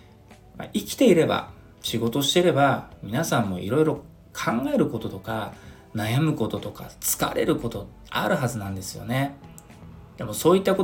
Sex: male